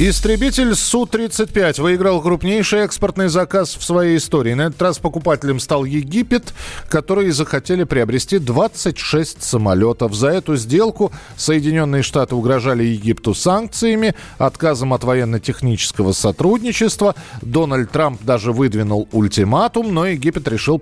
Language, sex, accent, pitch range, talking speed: Russian, male, native, 120-180 Hz, 115 wpm